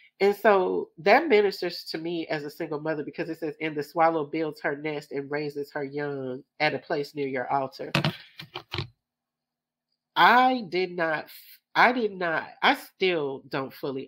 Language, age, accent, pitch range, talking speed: English, 40-59, American, 135-175 Hz, 165 wpm